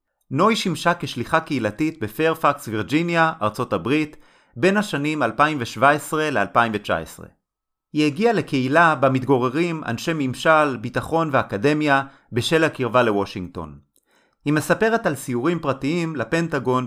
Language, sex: Hebrew, male